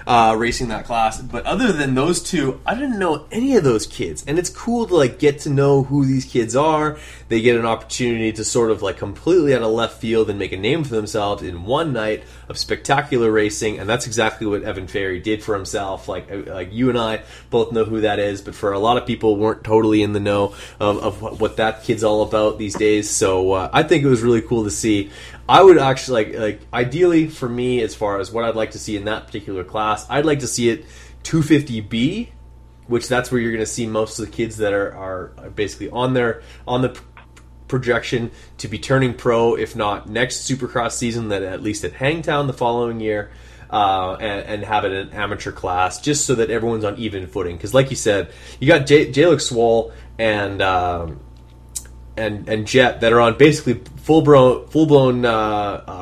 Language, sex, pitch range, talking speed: English, male, 105-125 Hz, 225 wpm